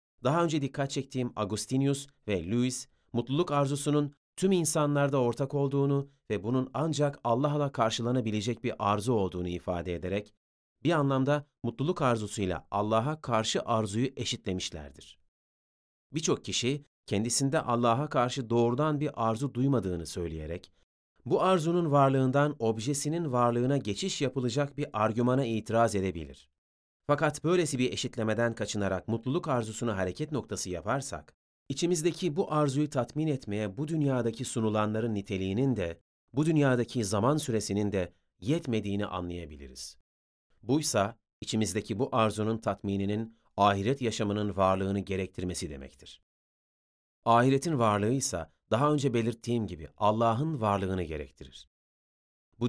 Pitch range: 100-140 Hz